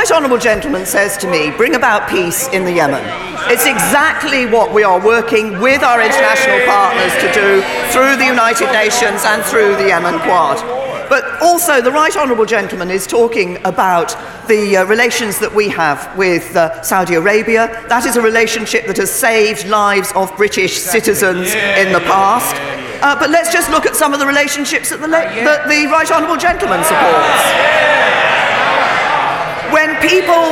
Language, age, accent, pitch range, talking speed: English, 40-59, British, 215-300 Hz, 170 wpm